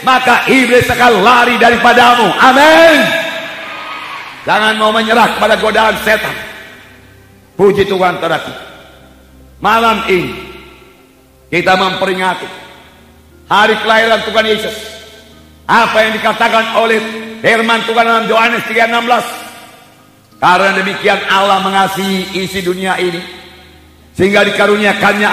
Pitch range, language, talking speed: 195-250 Hz, English, 95 wpm